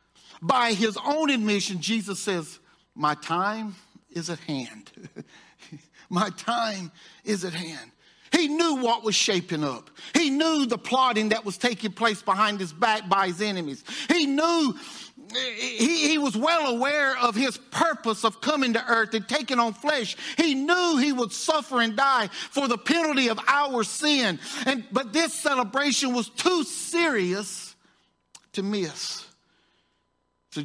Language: English